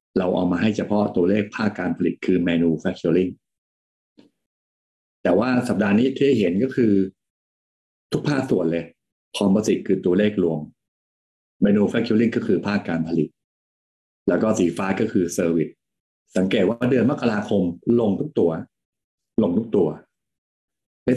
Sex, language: male, Thai